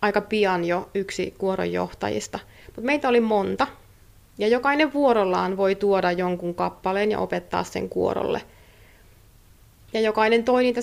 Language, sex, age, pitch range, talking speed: Finnish, female, 30-49, 175-220 Hz, 135 wpm